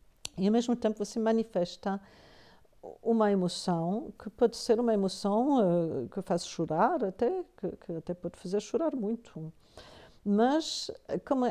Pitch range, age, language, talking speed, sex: 175-220 Hz, 50-69, Portuguese, 140 wpm, female